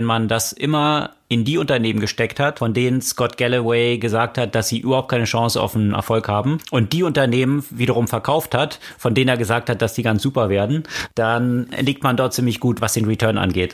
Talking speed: 220 wpm